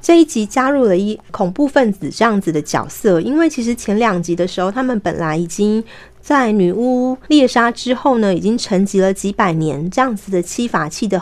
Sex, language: female, Chinese